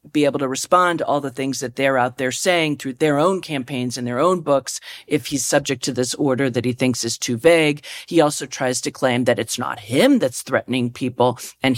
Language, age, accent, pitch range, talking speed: English, 40-59, American, 135-190 Hz, 235 wpm